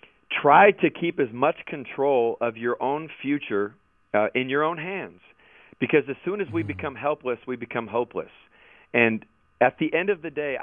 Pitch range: 115-145 Hz